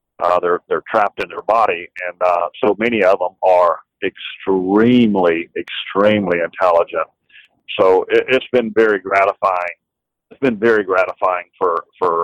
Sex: male